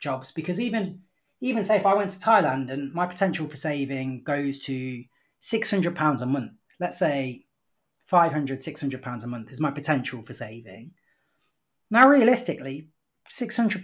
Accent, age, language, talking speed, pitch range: British, 30-49, English, 155 wpm, 135-195 Hz